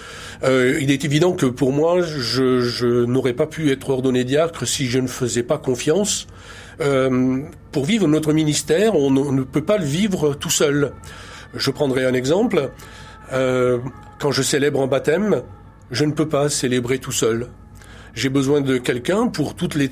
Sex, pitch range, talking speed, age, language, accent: male, 125-155 Hz, 180 wpm, 40-59, French, French